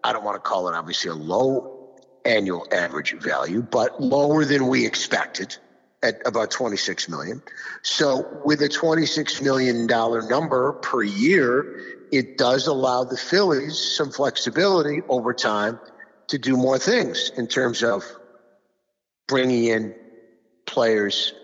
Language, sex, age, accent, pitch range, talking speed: English, male, 50-69, American, 120-150 Hz, 135 wpm